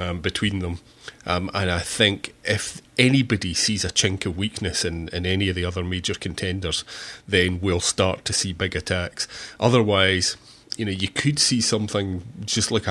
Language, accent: English, British